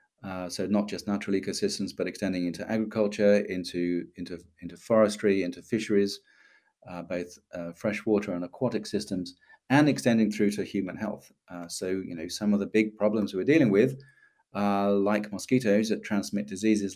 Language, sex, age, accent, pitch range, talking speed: English, male, 40-59, British, 100-120 Hz, 165 wpm